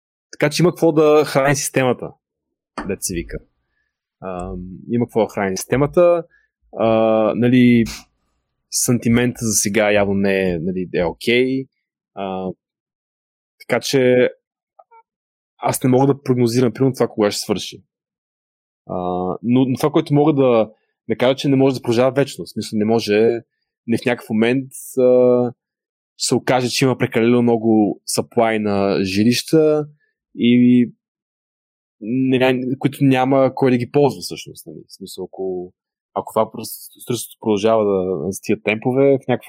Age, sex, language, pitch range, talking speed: 20-39, male, Bulgarian, 105-135 Hz, 135 wpm